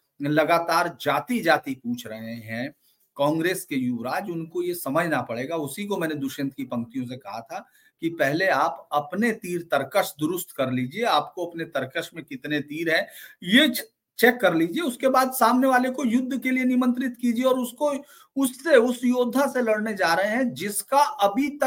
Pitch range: 150-220 Hz